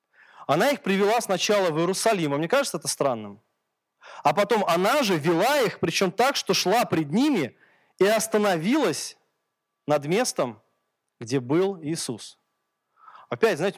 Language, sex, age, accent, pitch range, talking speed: Russian, male, 20-39, native, 145-200 Hz, 140 wpm